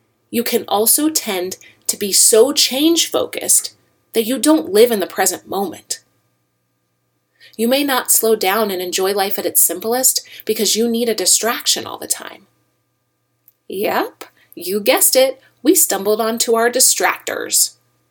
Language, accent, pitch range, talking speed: English, American, 195-285 Hz, 145 wpm